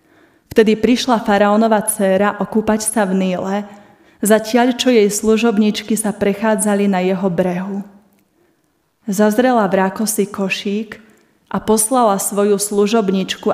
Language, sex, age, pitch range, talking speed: Slovak, female, 20-39, 200-225 Hz, 105 wpm